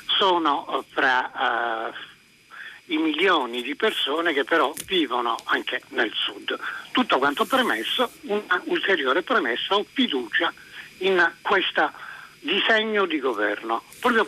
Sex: male